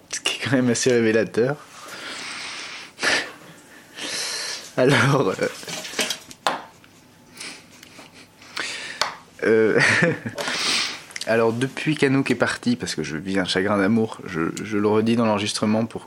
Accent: French